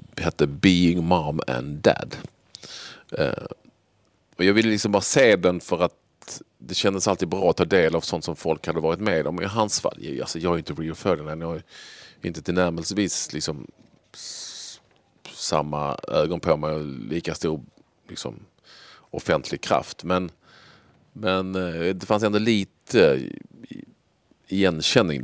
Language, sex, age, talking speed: Swedish, male, 40-59, 150 wpm